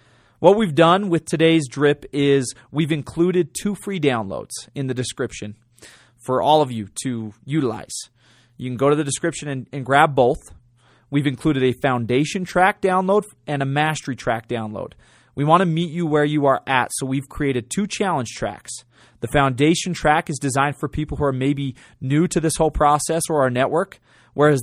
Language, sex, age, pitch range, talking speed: English, male, 30-49, 125-150 Hz, 185 wpm